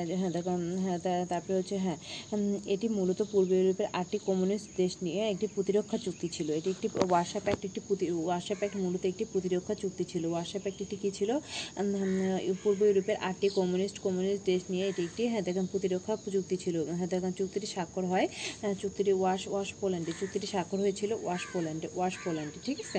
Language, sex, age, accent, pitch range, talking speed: Bengali, female, 30-49, native, 175-195 Hz, 120 wpm